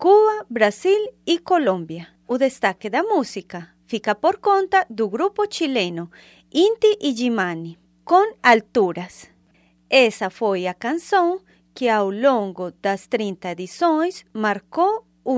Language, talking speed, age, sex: Portuguese, 115 wpm, 30-49, female